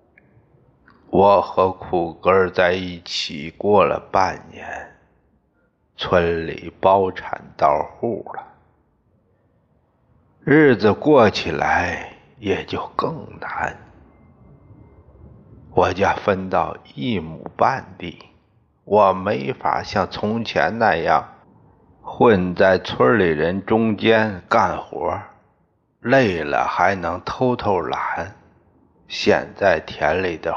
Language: Chinese